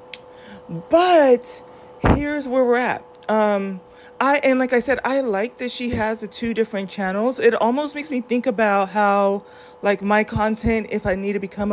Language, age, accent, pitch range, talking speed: English, 30-49, American, 185-235 Hz, 180 wpm